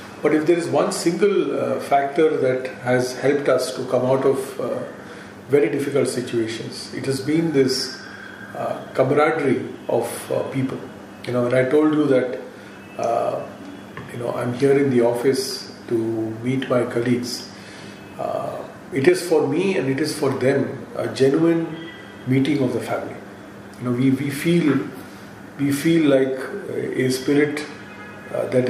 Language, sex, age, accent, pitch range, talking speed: English, male, 40-59, Indian, 115-135 Hz, 160 wpm